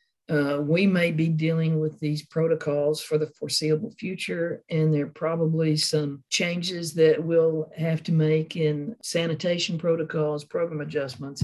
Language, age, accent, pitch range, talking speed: English, 50-69, American, 150-170 Hz, 145 wpm